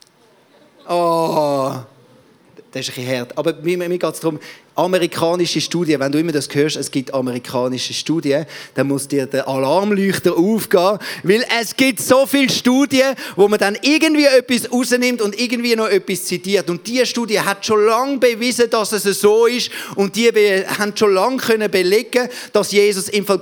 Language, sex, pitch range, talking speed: German, male, 170-225 Hz, 175 wpm